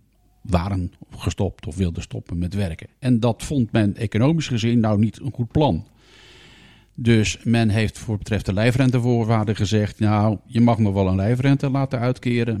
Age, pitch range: 50-69, 95-115 Hz